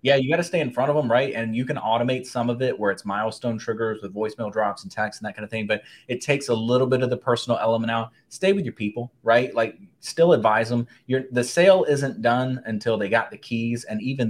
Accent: American